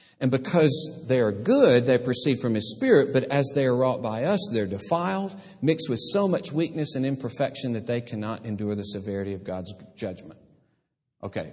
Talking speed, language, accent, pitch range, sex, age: 195 wpm, English, American, 125-205 Hz, male, 50-69